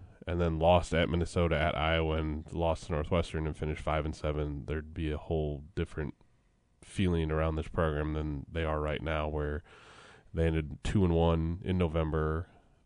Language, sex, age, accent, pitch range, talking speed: English, male, 20-39, American, 80-105 Hz, 175 wpm